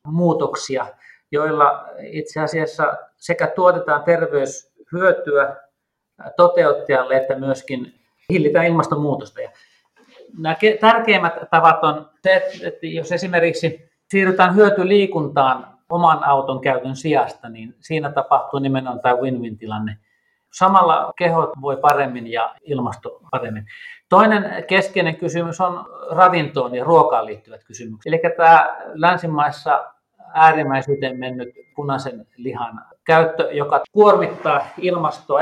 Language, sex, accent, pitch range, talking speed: Finnish, male, native, 135-175 Hz, 100 wpm